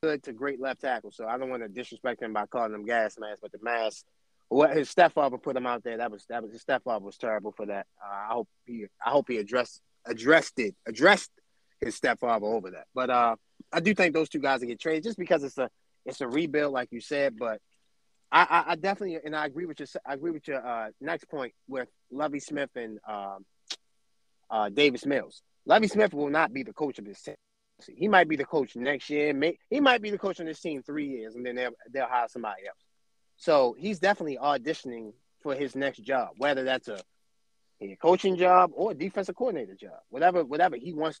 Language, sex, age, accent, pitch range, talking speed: English, male, 30-49, American, 125-170 Hz, 225 wpm